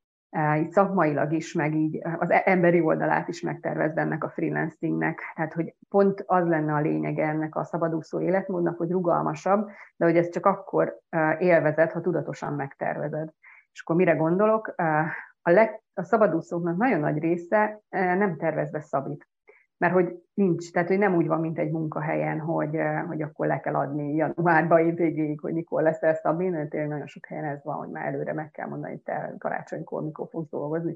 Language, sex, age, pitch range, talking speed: Hungarian, female, 30-49, 155-190 Hz, 175 wpm